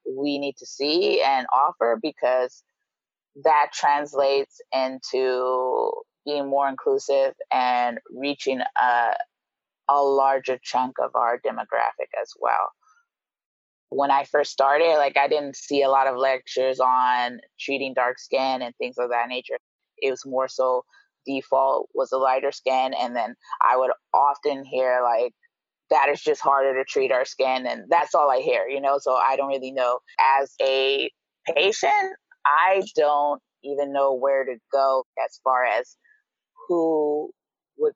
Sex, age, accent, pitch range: female, 20-39, American, 130-155 Hz